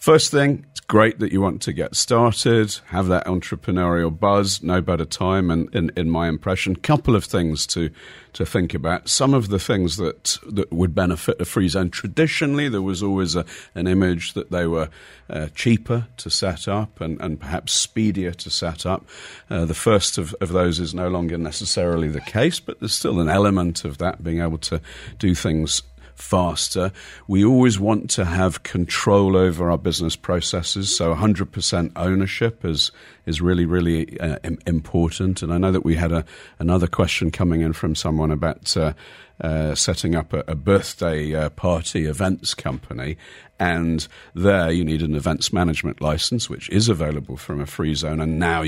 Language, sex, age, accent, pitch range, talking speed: English, male, 50-69, British, 80-100 Hz, 185 wpm